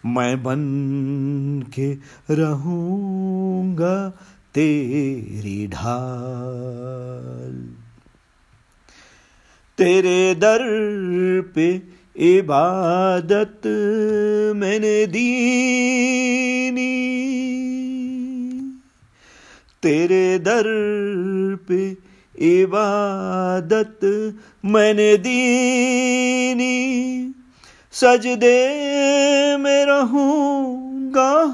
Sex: male